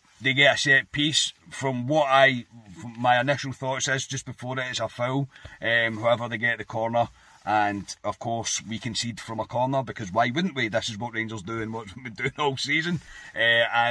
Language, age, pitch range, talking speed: English, 40-59, 110-125 Hz, 210 wpm